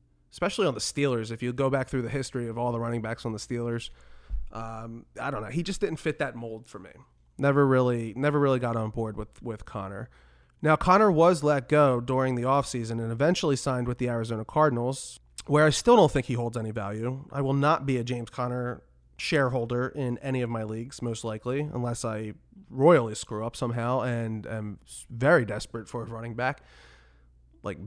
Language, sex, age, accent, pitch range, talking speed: English, male, 30-49, American, 110-145 Hz, 205 wpm